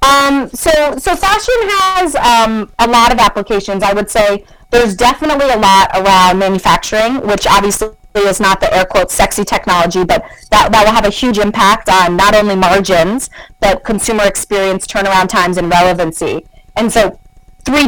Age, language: 30-49, English